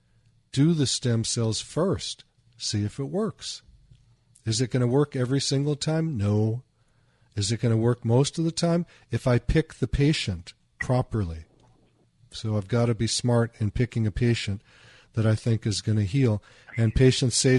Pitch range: 110-130 Hz